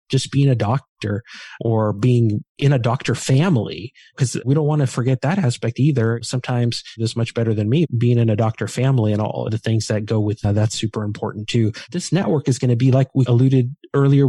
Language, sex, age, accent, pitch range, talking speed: English, male, 30-49, American, 115-135 Hz, 225 wpm